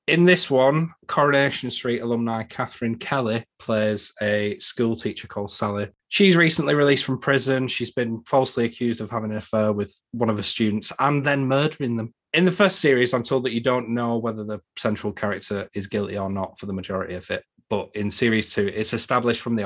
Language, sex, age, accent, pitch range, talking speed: English, male, 20-39, British, 105-130 Hz, 205 wpm